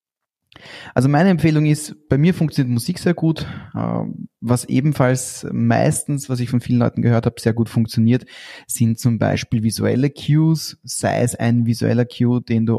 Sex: male